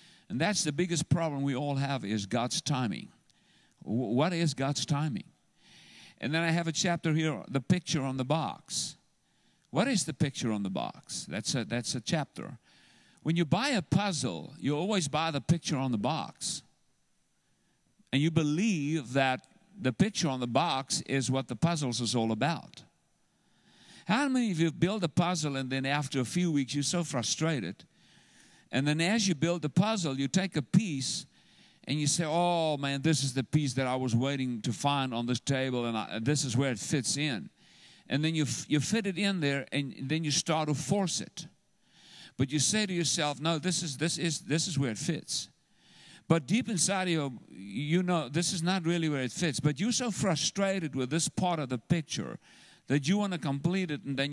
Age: 50-69